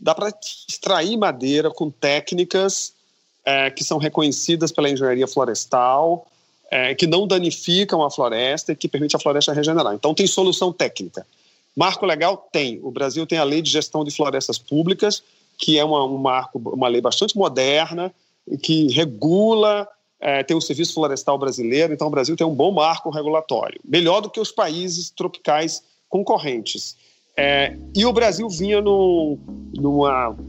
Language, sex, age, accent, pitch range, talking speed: Portuguese, male, 40-59, Brazilian, 150-195 Hz, 160 wpm